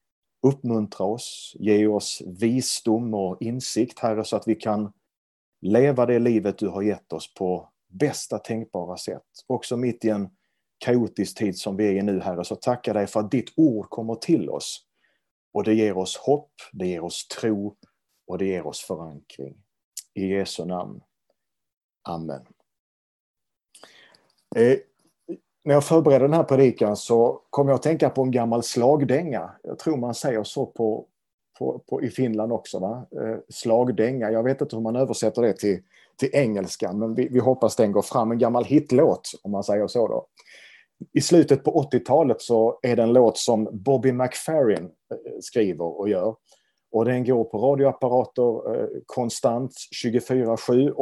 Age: 30-49